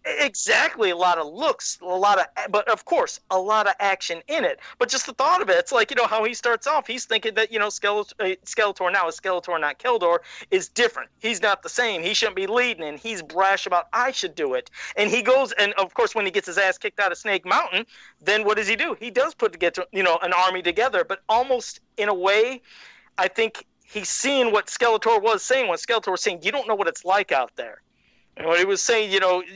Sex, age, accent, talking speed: male, 40-59, American, 250 wpm